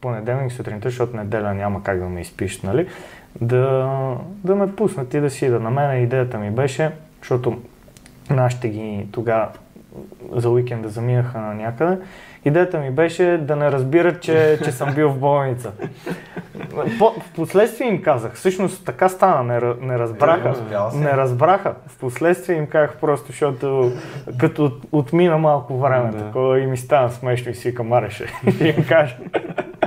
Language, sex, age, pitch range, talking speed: Bulgarian, male, 20-39, 110-145 Hz, 150 wpm